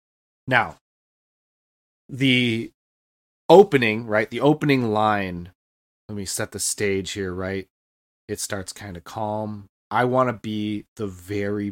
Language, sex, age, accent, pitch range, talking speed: English, male, 20-39, American, 95-125 Hz, 125 wpm